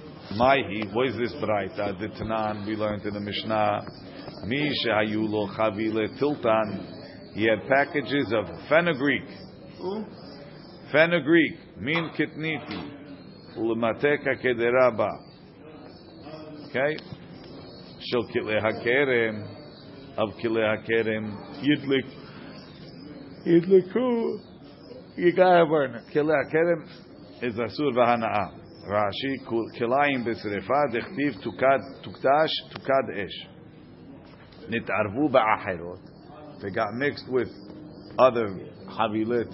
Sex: male